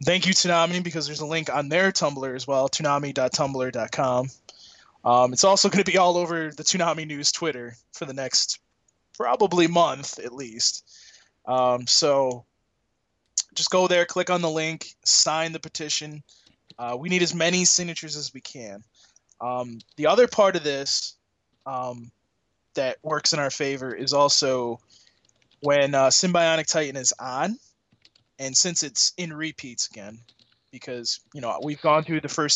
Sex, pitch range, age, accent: male, 125-160 Hz, 20-39, American